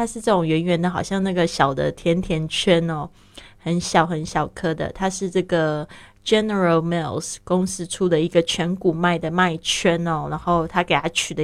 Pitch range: 160-195 Hz